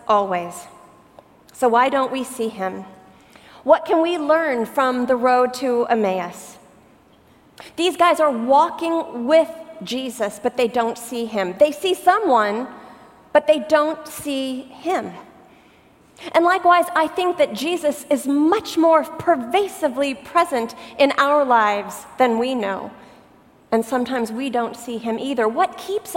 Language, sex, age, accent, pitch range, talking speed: English, female, 40-59, American, 245-325 Hz, 140 wpm